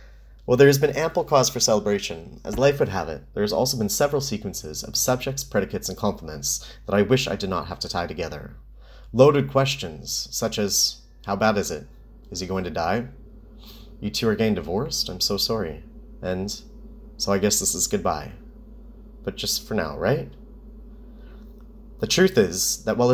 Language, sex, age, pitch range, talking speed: English, male, 30-49, 100-150 Hz, 185 wpm